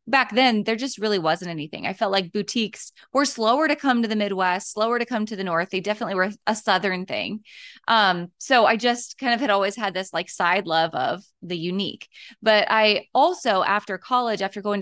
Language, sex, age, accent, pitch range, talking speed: English, female, 20-39, American, 195-245 Hz, 215 wpm